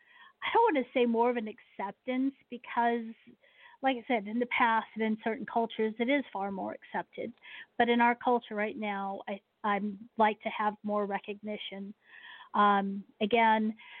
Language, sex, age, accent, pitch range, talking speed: English, female, 40-59, American, 205-235 Hz, 170 wpm